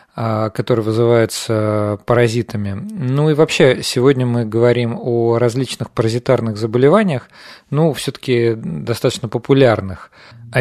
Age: 40-59